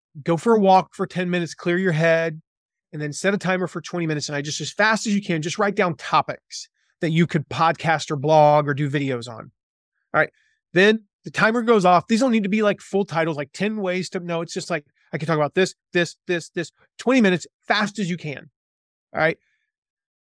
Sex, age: male, 30-49